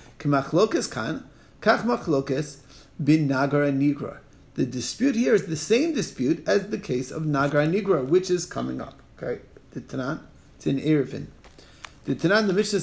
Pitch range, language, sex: 140-190 Hz, English, male